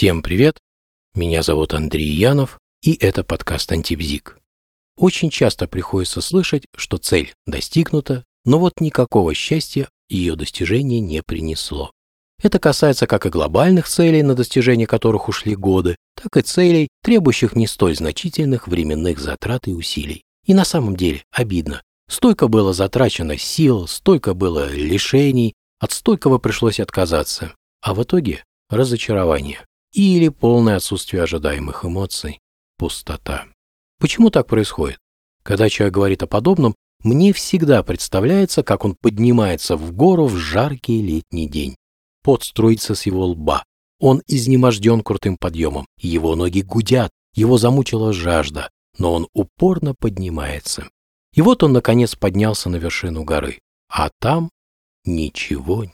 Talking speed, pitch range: 130 wpm, 80-130 Hz